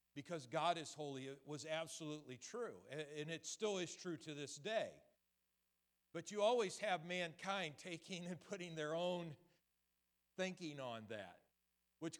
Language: English